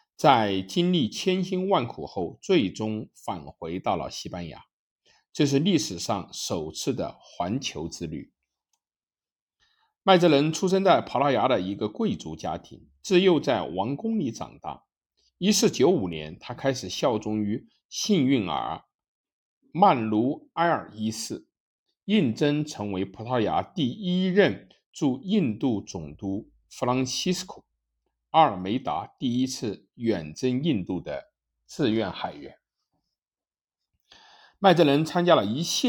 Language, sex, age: Chinese, male, 50-69